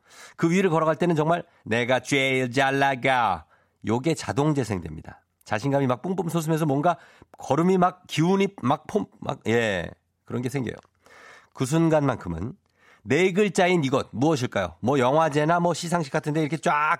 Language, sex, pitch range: Korean, male, 115-170 Hz